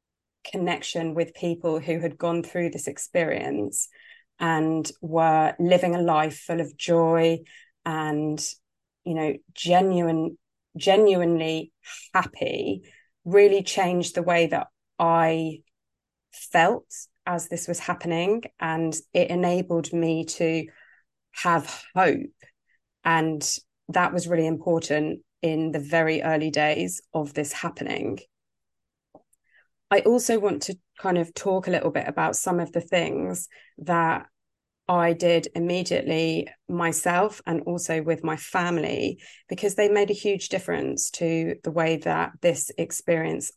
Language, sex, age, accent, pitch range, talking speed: English, female, 20-39, British, 160-180 Hz, 125 wpm